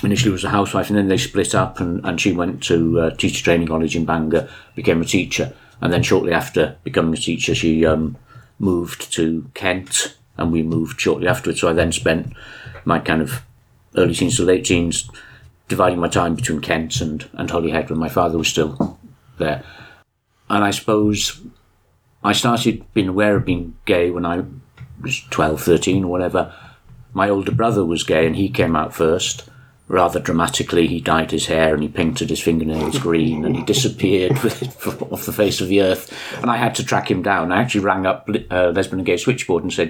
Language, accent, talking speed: English, British, 200 wpm